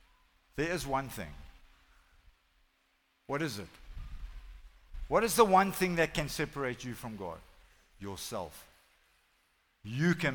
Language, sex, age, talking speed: English, male, 60-79, 120 wpm